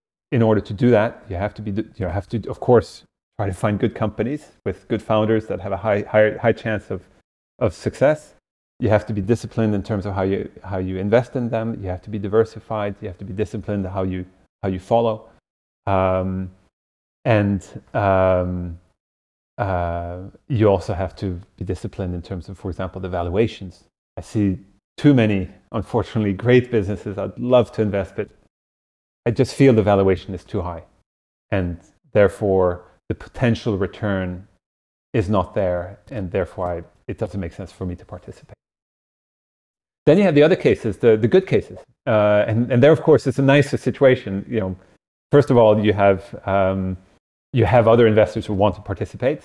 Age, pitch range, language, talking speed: 30-49, 95-110 Hz, English, 190 wpm